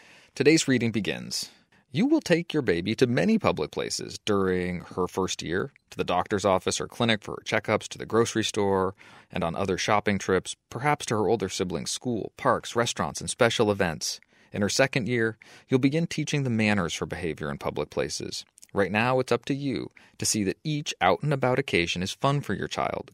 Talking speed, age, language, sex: 195 wpm, 30-49, English, male